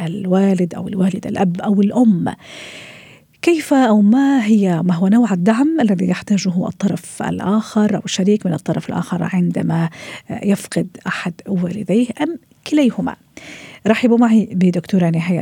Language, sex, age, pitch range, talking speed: Arabic, female, 50-69, 180-225 Hz, 130 wpm